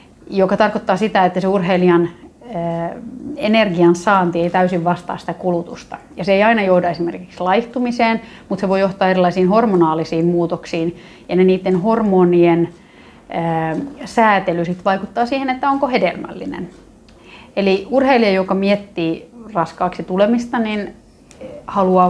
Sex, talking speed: female, 130 wpm